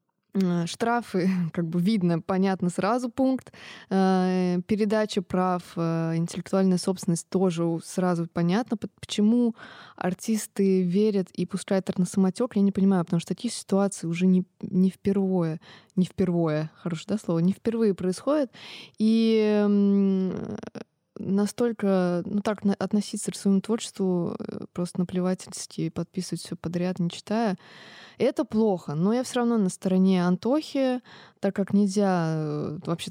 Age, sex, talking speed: 20-39, female, 125 wpm